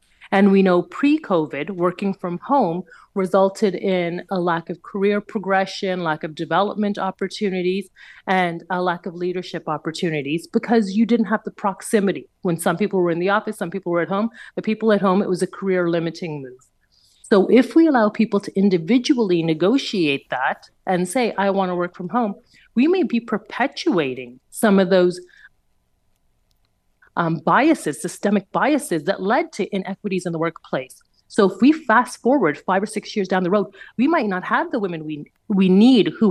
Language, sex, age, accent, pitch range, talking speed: English, female, 30-49, American, 175-205 Hz, 180 wpm